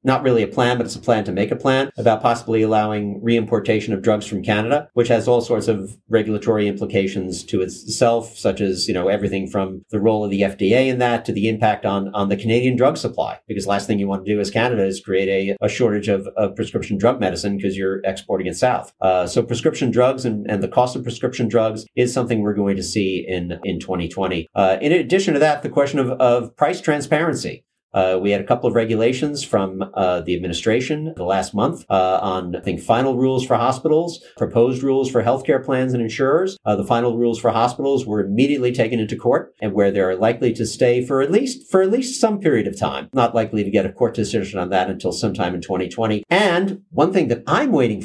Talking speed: 225 wpm